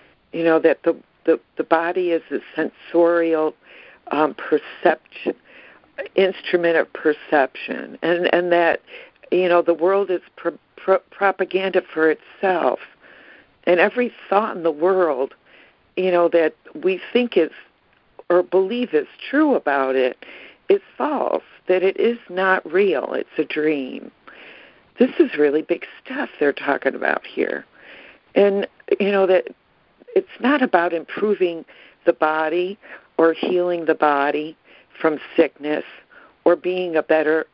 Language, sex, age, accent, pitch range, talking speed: English, female, 60-79, American, 160-195 Hz, 135 wpm